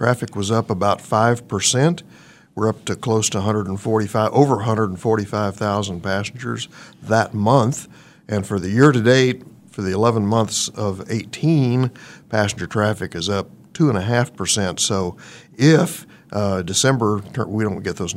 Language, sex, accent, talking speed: English, male, American, 135 wpm